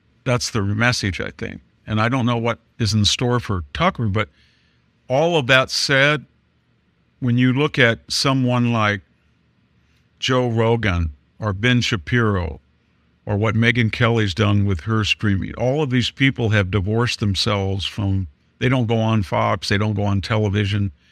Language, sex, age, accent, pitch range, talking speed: English, male, 50-69, American, 100-125 Hz, 160 wpm